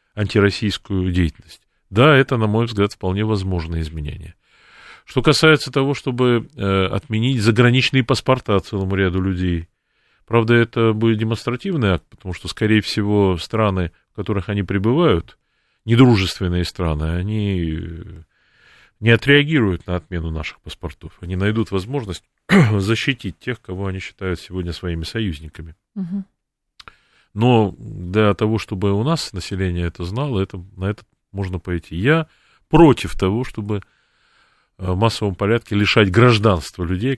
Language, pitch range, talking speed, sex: Russian, 90-115 Hz, 125 wpm, male